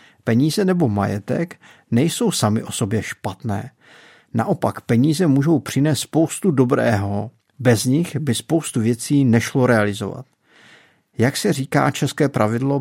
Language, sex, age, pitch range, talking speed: Czech, male, 50-69, 110-145 Hz, 120 wpm